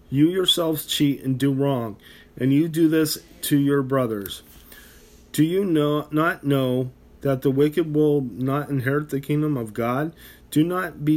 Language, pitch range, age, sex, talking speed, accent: English, 125-150 Hz, 30-49, male, 165 wpm, American